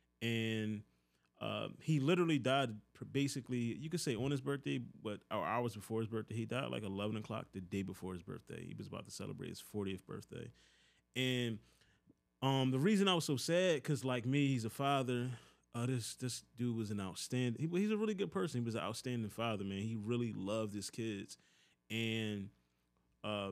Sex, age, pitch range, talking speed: male, 20-39, 110-140 Hz, 195 wpm